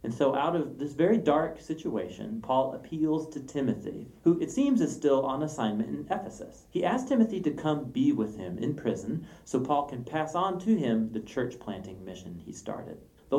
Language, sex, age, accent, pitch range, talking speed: English, male, 40-59, American, 115-165 Hz, 200 wpm